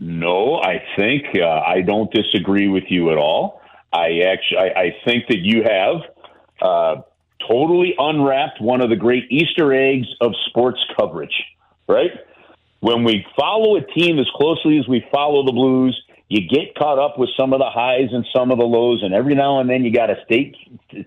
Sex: male